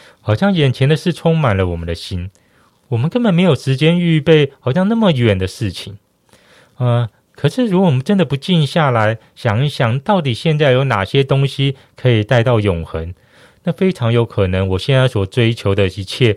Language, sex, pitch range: Chinese, male, 100-150 Hz